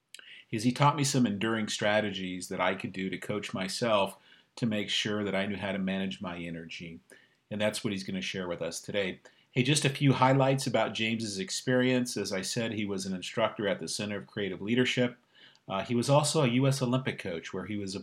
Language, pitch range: English, 100-125 Hz